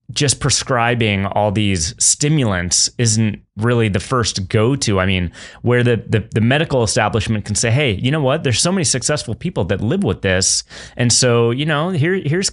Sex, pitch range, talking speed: male, 105-125 Hz, 185 wpm